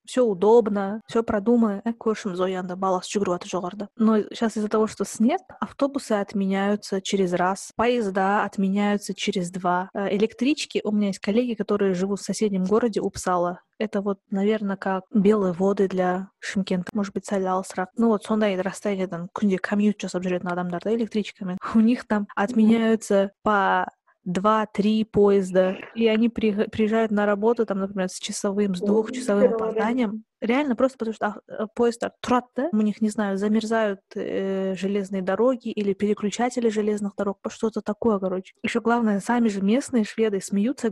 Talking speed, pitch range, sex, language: 160 wpm, 195-230 Hz, female, Russian